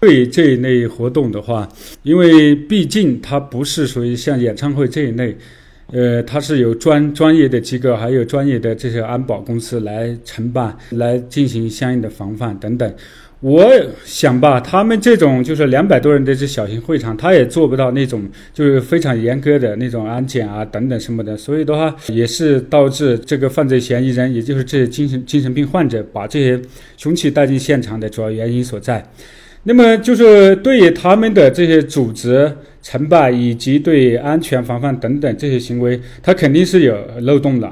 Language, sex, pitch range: Chinese, male, 120-155 Hz